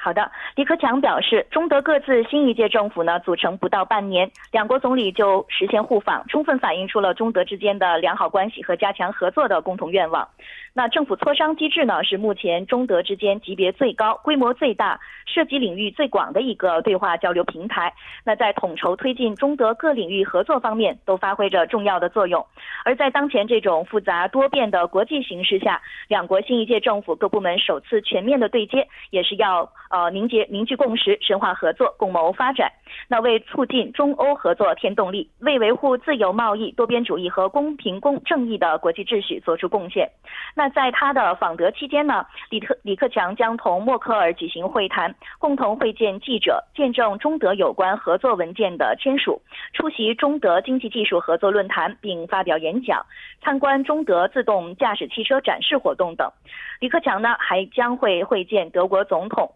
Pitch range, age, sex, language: 190-275 Hz, 20-39, female, Korean